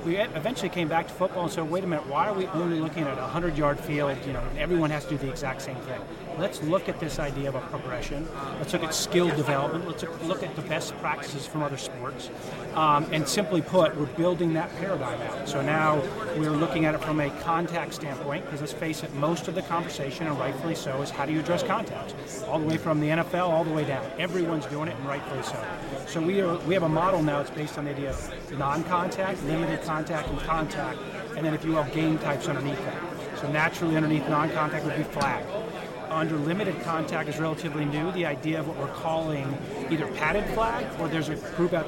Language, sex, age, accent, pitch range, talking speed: English, male, 30-49, American, 145-170 Hz, 230 wpm